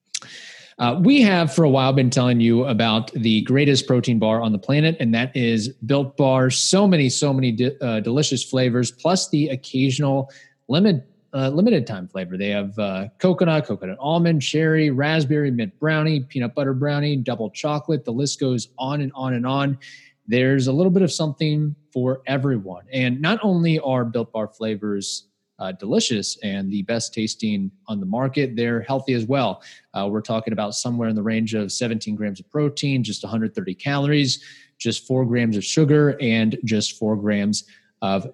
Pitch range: 115-150 Hz